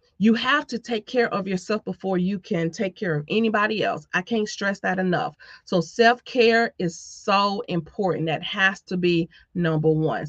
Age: 40-59